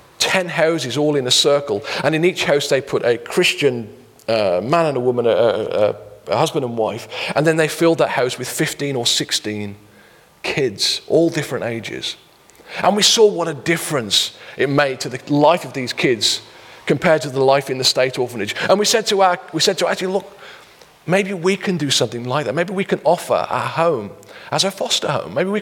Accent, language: British, English